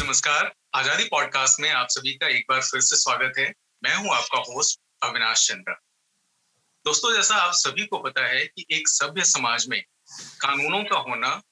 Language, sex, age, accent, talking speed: Hindi, male, 40-59, native, 175 wpm